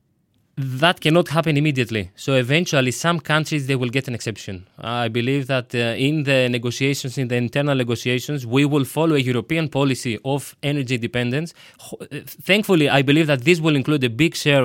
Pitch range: 120-150 Hz